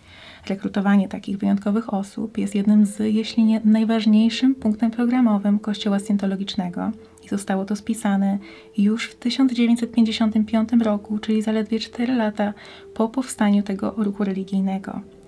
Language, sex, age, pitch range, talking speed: Polish, female, 20-39, 195-215 Hz, 120 wpm